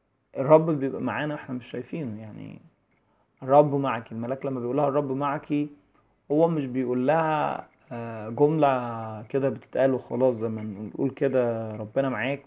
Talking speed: 135 wpm